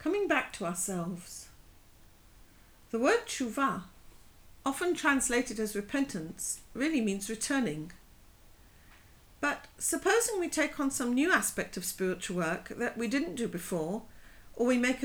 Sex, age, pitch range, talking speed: female, 50-69, 190-280 Hz, 130 wpm